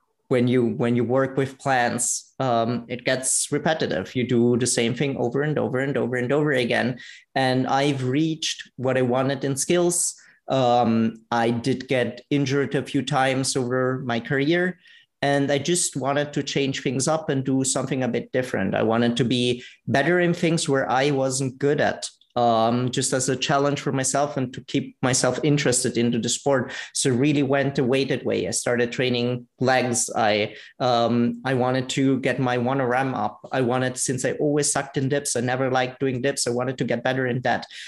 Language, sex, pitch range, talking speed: English, male, 125-140 Hz, 195 wpm